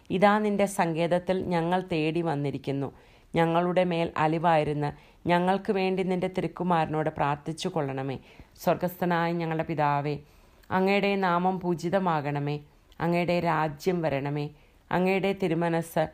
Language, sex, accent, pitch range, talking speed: English, female, Indian, 155-180 Hz, 80 wpm